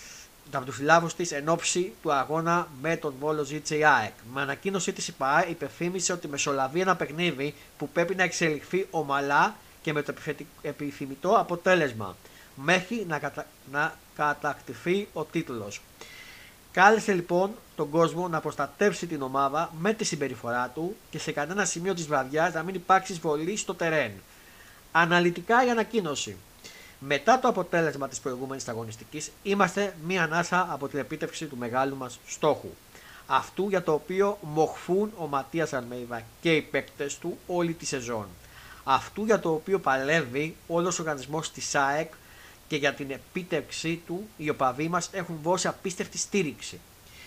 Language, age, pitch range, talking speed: Greek, 30-49, 140-180 Hz, 145 wpm